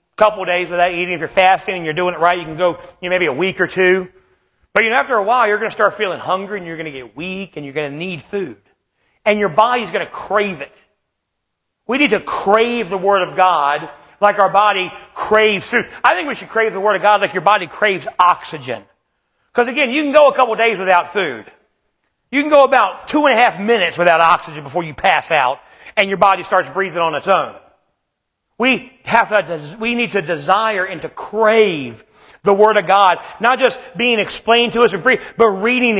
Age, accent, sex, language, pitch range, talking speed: 40-59, American, male, English, 180-230 Hz, 225 wpm